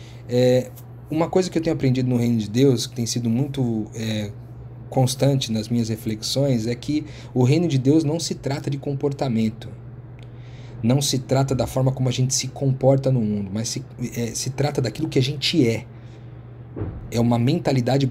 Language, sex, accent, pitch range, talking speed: Portuguese, male, Brazilian, 115-135 Hz, 185 wpm